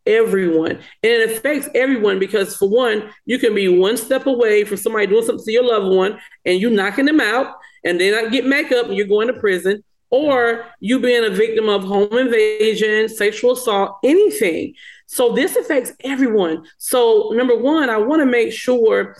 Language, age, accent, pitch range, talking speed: English, 40-59, American, 225-305 Hz, 190 wpm